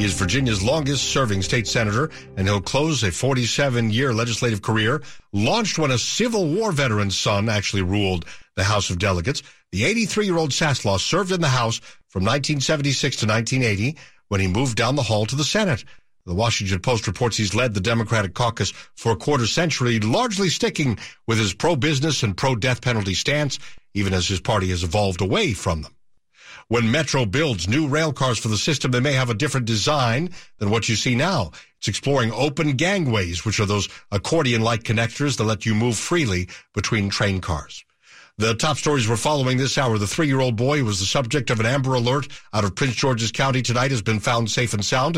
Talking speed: 190 wpm